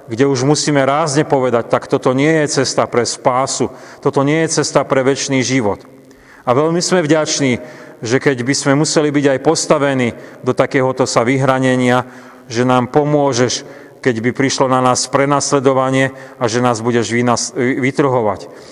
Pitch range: 125-140 Hz